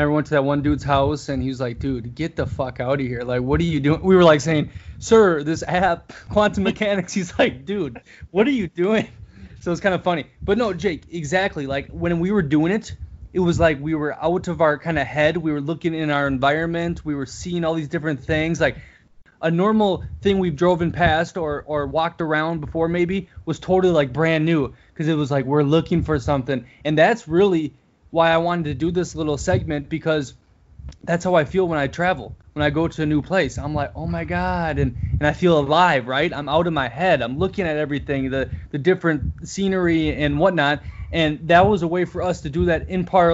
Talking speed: 235 wpm